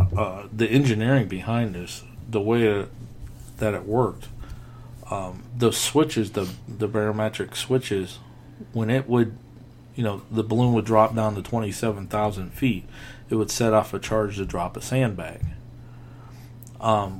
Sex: male